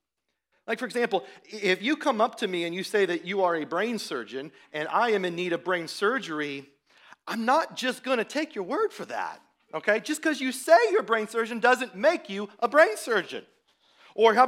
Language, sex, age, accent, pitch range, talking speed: English, male, 40-59, American, 165-245 Hz, 220 wpm